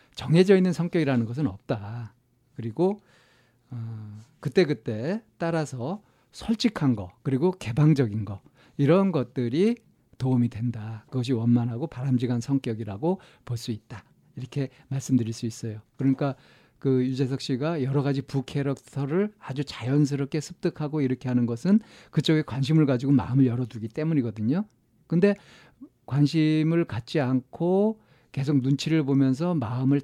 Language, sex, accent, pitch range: Korean, male, native, 120-155 Hz